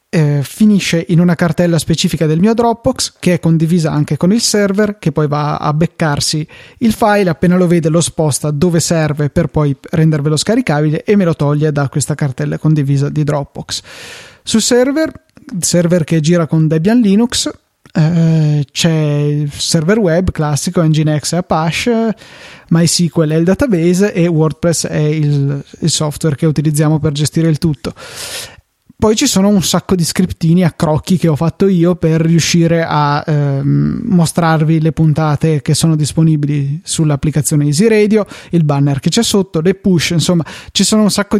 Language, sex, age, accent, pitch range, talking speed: Italian, male, 20-39, native, 155-185 Hz, 165 wpm